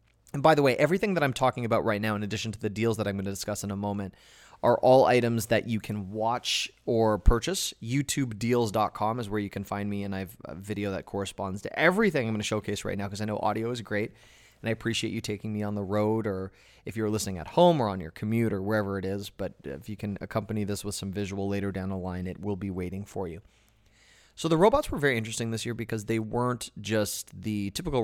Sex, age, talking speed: male, 30-49, 250 wpm